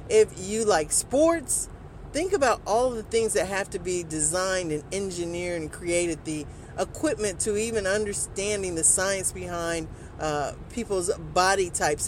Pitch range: 155-225 Hz